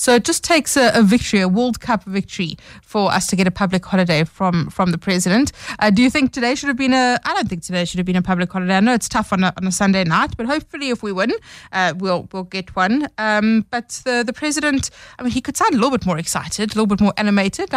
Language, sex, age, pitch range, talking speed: English, female, 30-49, 185-240 Hz, 275 wpm